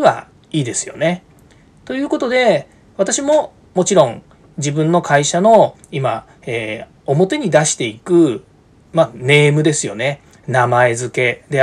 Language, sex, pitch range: Japanese, male, 135-215 Hz